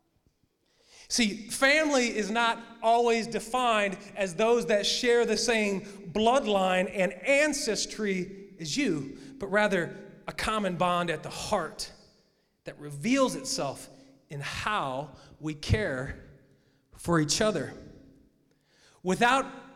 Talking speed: 110 wpm